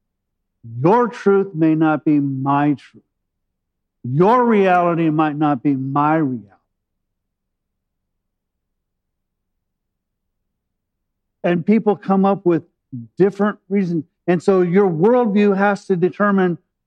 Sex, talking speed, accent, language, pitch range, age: male, 100 wpm, American, English, 120-180 Hz, 50-69